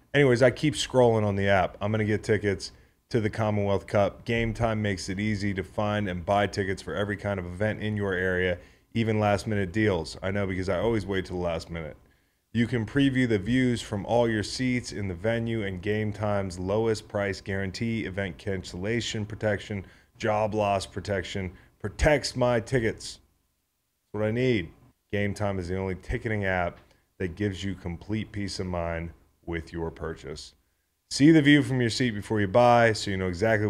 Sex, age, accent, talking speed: male, 30-49, American, 190 wpm